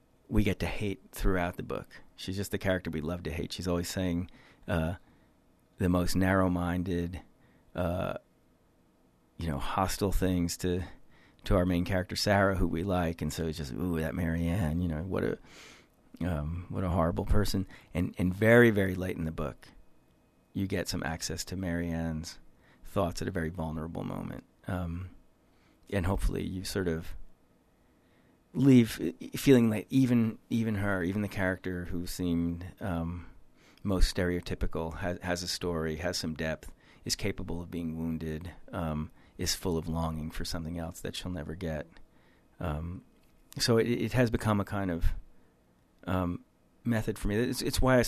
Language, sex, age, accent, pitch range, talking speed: English, male, 40-59, American, 85-100 Hz, 165 wpm